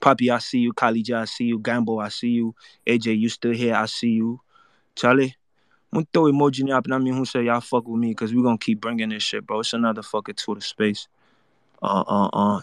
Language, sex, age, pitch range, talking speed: English, male, 20-39, 110-125 Hz, 220 wpm